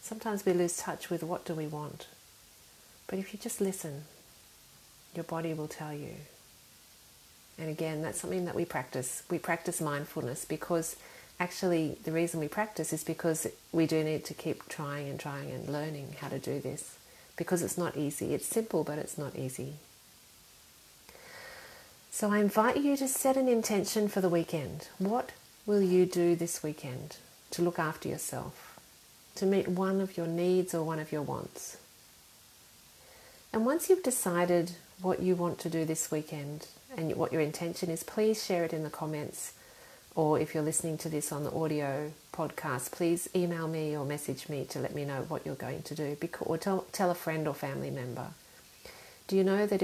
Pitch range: 150-185 Hz